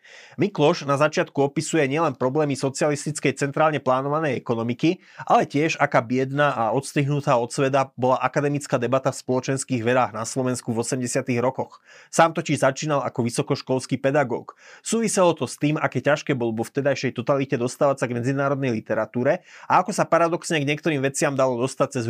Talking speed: 165 wpm